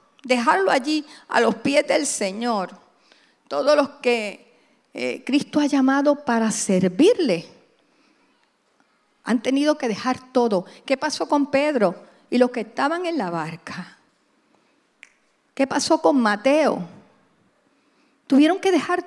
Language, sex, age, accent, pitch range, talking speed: English, female, 50-69, American, 215-290 Hz, 125 wpm